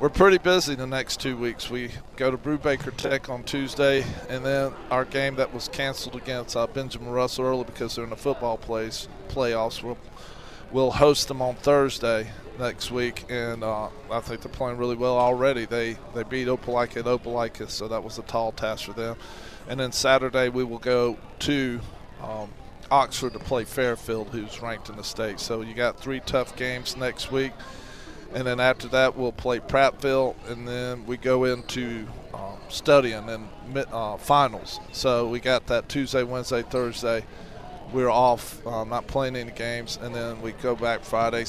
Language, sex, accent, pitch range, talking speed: English, male, American, 115-130 Hz, 180 wpm